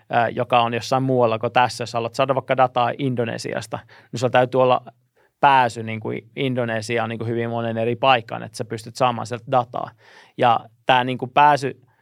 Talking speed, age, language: 170 wpm, 30-49, Finnish